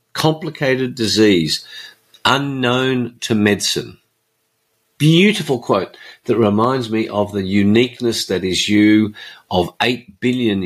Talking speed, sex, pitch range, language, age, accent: 105 wpm, male, 95-120 Hz, English, 50-69, Australian